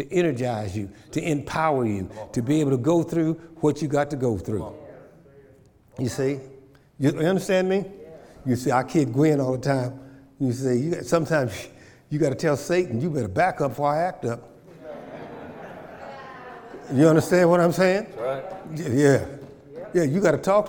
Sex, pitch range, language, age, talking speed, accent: male, 135-175 Hz, English, 60-79, 170 wpm, American